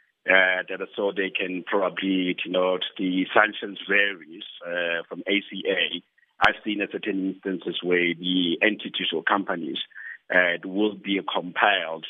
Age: 50-69